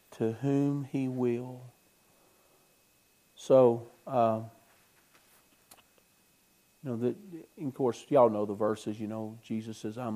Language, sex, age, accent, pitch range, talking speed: English, male, 50-69, American, 115-140 Hz, 120 wpm